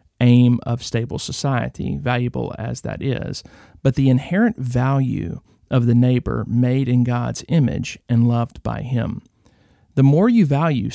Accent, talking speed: American, 150 wpm